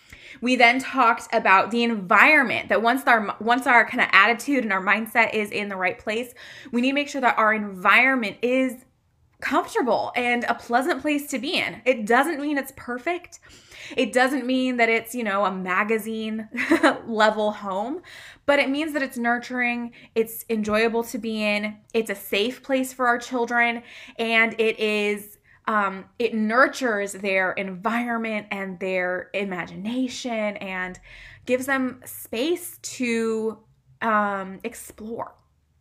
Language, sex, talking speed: English, female, 150 wpm